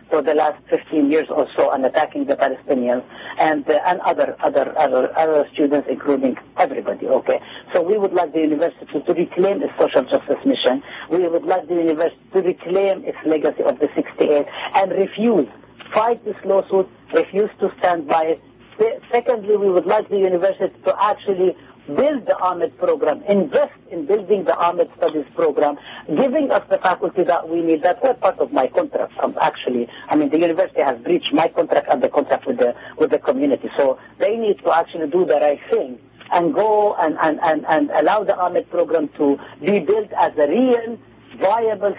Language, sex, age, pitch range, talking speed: English, female, 50-69, 170-235 Hz, 190 wpm